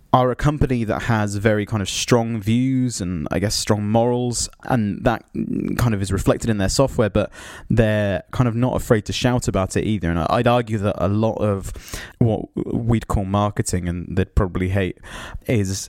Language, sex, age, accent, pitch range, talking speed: English, male, 20-39, British, 95-115 Hz, 195 wpm